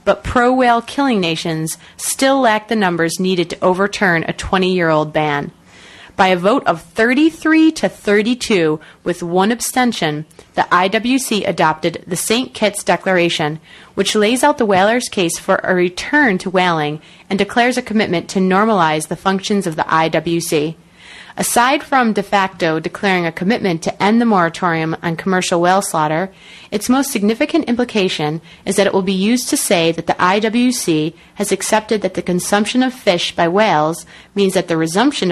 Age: 30-49